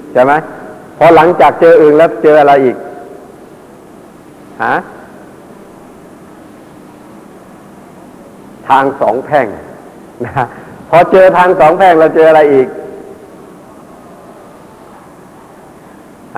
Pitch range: 135-180 Hz